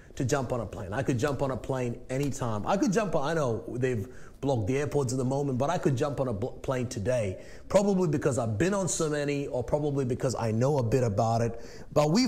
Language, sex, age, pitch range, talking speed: English, male, 30-49, 130-170 Hz, 250 wpm